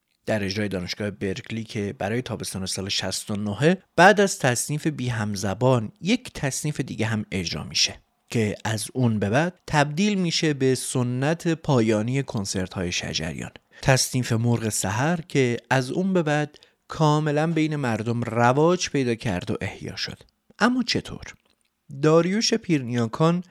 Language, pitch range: Persian, 110-150 Hz